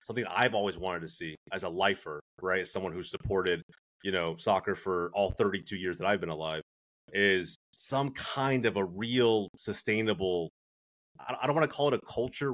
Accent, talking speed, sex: American, 190 wpm, male